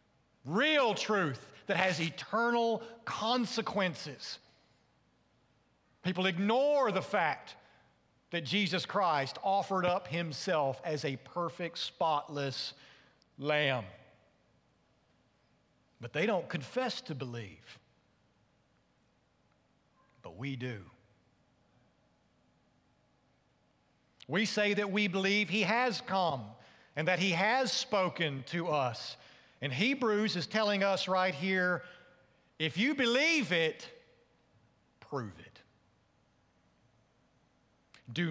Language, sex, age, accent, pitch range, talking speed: English, male, 50-69, American, 145-215 Hz, 90 wpm